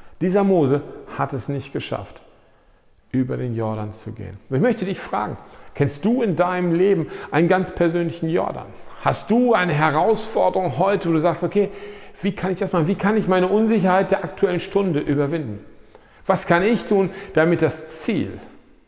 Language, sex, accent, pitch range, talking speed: German, male, German, 150-195 Hz, 175 wpm